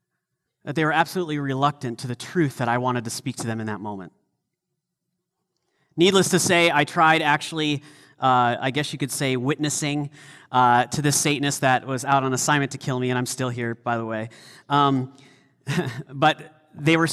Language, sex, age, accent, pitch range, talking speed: English, male, 30-49, American, 125-160 Hz, 190 wpm